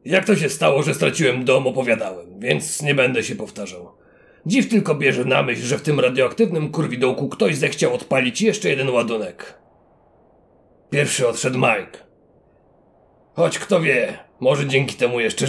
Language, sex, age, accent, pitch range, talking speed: Polish, male, 40-59, native, 125-200 Hz, 150 wpm